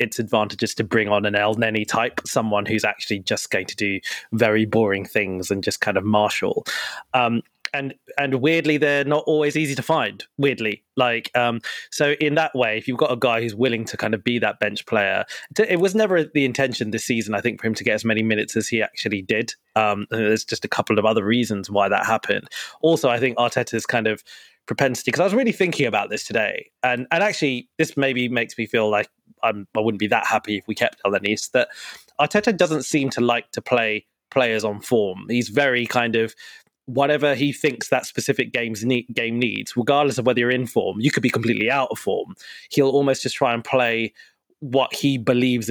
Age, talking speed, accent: 20-39, 220 wpm, British